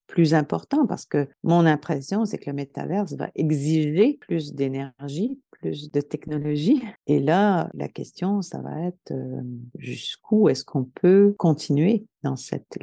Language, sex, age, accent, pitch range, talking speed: English, female, 50-69, French, 130-180 Hz, 145 wpm